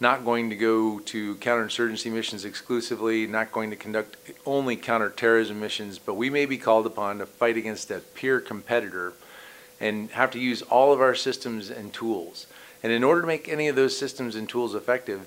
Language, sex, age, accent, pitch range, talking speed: English, male, 40-59, American, 110-125 Hz, 195 wpm